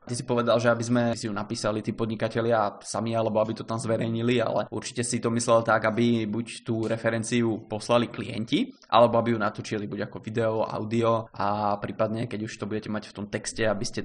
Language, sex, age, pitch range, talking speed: Czech, male, 20-39, 110-125 Hz, 210 wpm